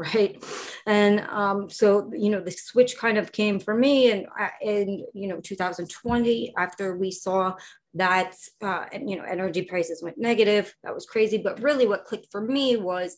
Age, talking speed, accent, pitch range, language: 30-49, 180 wpm, American, 180-220 Hz, English